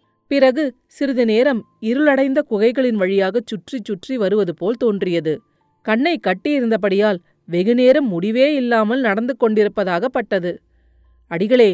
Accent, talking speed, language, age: native, 95 wpm, Tamil, 30-49